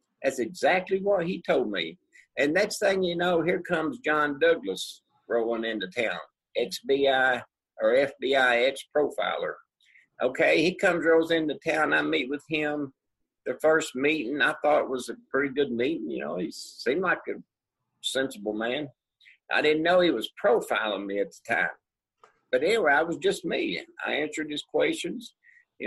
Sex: male